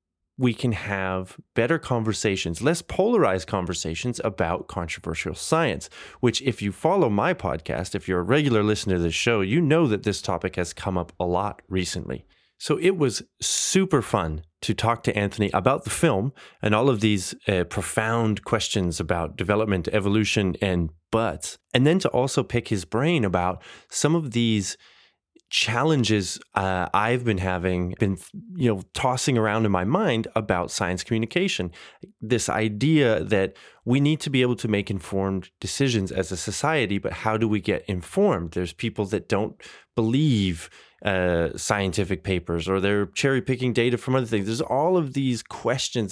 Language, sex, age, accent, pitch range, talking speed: English, male, 30-49, American, 95-120 Hz, 165 wpm